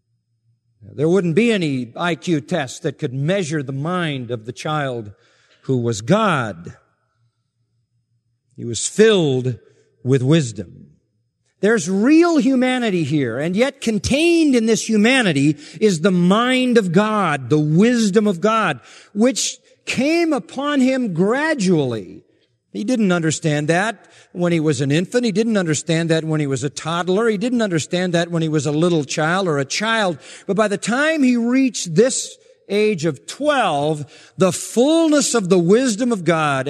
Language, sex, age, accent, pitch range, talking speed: English, male, 50-69, American, 135-215 Hz, 155 wpm